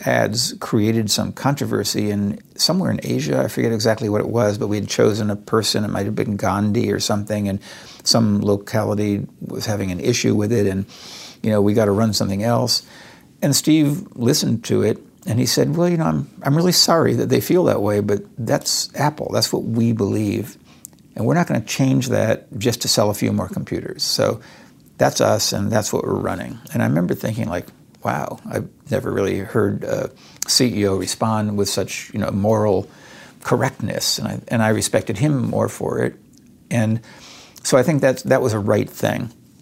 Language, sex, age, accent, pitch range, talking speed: English, male, 60-79, American, 100-115 Hz, 200 wpm